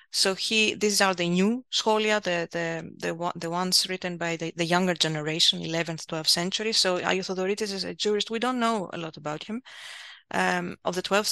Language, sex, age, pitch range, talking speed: English, female, 30-49, 175-210 Hz, 195 wpm